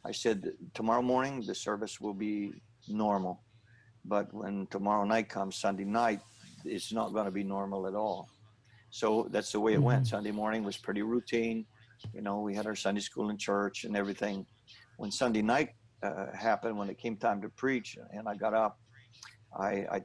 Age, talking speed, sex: 60-79, 190 wpm, male